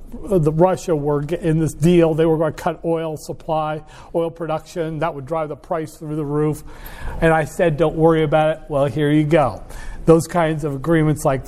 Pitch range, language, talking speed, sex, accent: 145-170 Hz, English, 205 wpm, male, American